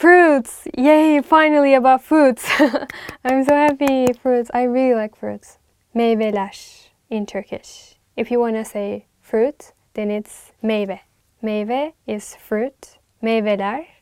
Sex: female